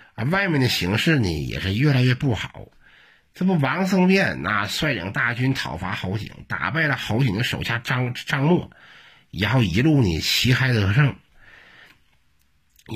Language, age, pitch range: Chinese, 50-69, 95-145 Hz